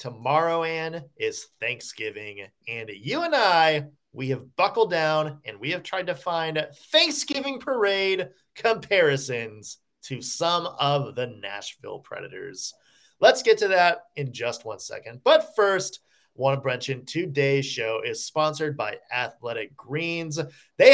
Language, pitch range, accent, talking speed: English, 140-225 Hz, American, 140 wpm